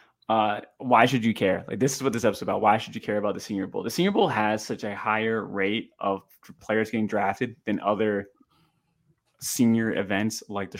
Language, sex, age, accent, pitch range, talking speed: English, male, 20-39, American, 105-130 Hz, 215 wpm